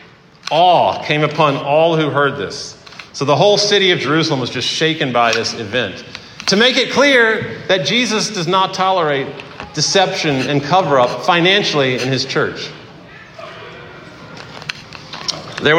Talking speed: 140 wpm